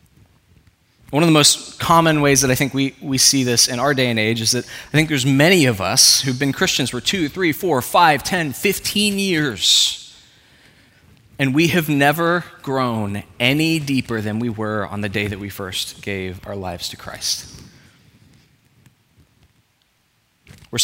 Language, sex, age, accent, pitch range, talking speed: English, male, 20-39, American, 115-150 Hz, 170 wpm